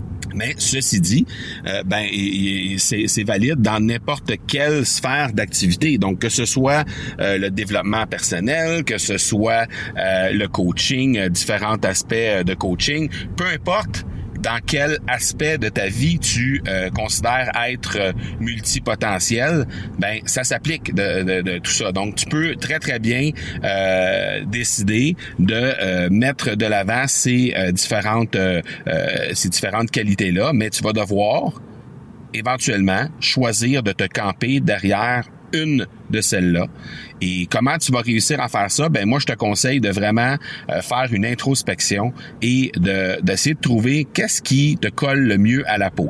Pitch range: 100-140 Hz